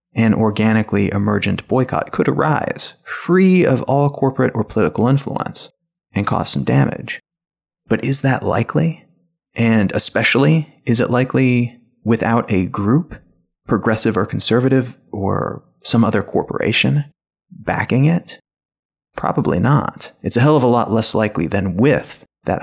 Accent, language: American, English